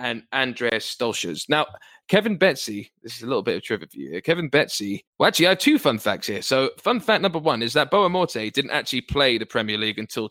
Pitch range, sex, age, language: 110-160 Hz, male, 20-39, English